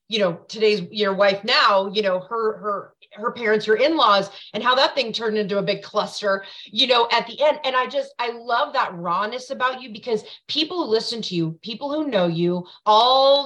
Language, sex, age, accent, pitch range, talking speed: English, female, 30-49, American, 205-265 Hz, 215 wpm